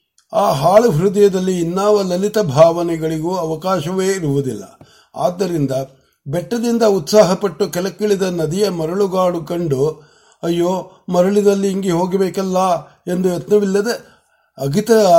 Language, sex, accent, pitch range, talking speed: Marathi, male, native, 155-195 Hz, 55 wpm